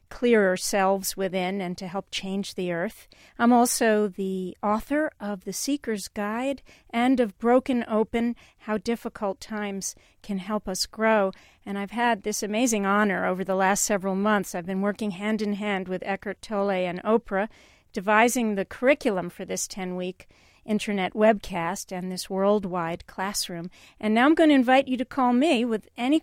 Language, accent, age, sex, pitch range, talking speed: English, American, 50-69, female, 195-235 Hz, 170 wpm